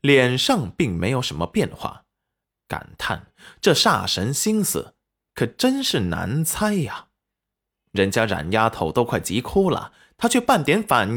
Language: Chinese